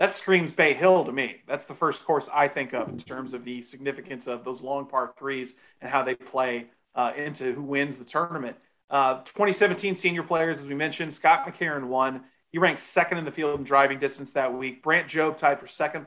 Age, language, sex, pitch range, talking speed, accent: 30-49, English, male, 140-175 Hz, 220 wpm, American